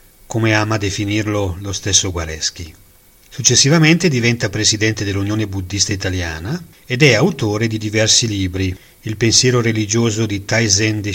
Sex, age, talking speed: male, 40-59, 125 wpm